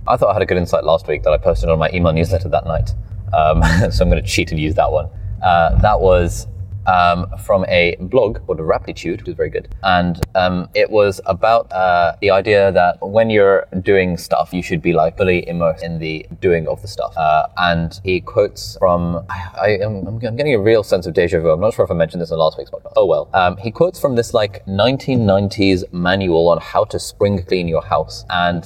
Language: English